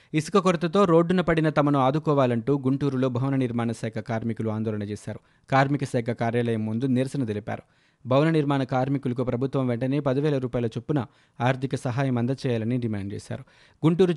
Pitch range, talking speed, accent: 120-150 Hz, 140 wpm, native